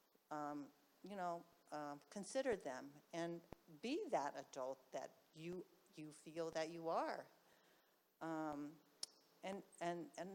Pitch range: 145-180 Hz